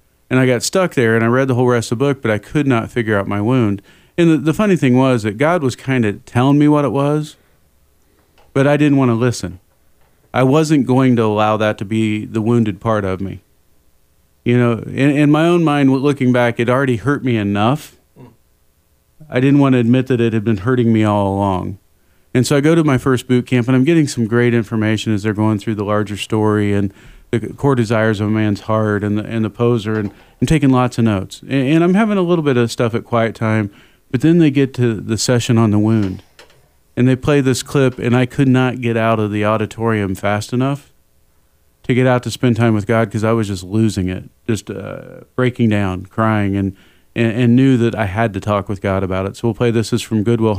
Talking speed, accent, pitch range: 240 wpm, American, 105-130 Hz